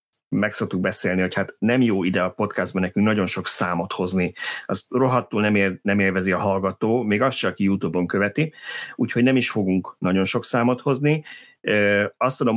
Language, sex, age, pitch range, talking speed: Hungarian, male, 30-49, 95-125 Hz, 180 wpm